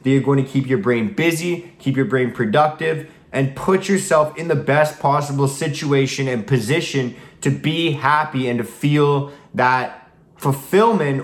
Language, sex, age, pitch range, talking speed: English, male, 20-39, 135-155 Hz, 160 wpm